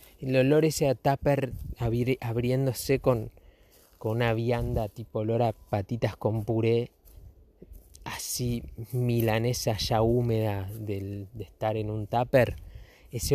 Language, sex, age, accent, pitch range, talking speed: Spanish, male, 20-39, Argentinian, 105-145 Hz, 115 wpm